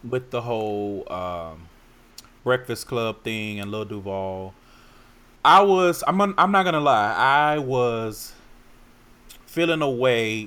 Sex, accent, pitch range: male, American, 100-125 Hz